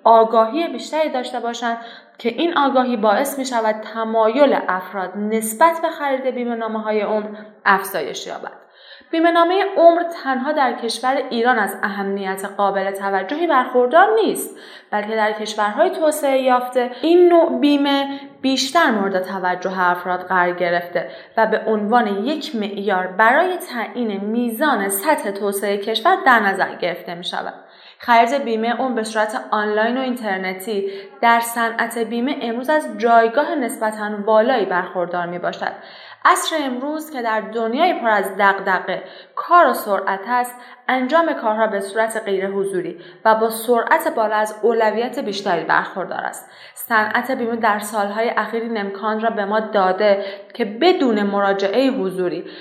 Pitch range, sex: 205-260 Hz, female